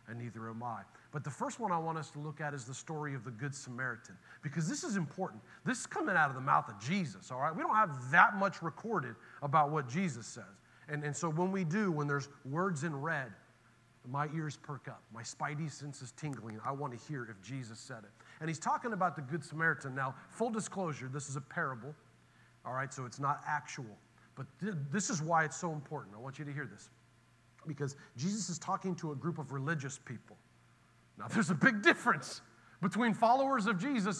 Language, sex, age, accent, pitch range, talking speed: English, male, 40-59, American, 130-175 Hz, 220 wpm